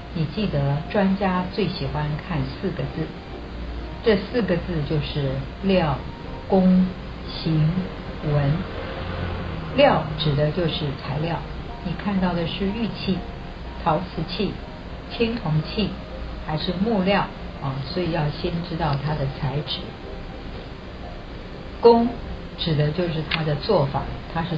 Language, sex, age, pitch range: Chinese, female, 50-69, 145-185 Hz